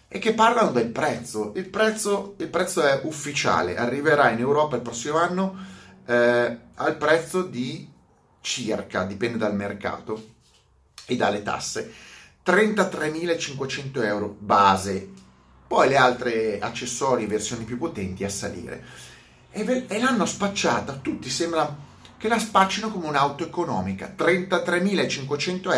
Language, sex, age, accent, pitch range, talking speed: Italian, male, 30-49, native, 120-190 Hz, 125 wpm